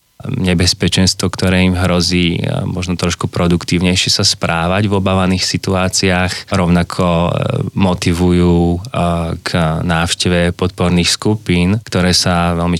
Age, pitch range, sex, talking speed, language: 20-39, 85-100 Hz, male, 100 wpm, Slovak